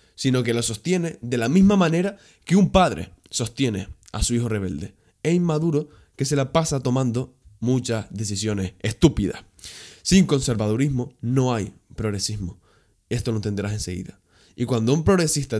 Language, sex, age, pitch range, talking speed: Spanish, male, 20-39, 105-145 Hz, 150 wpm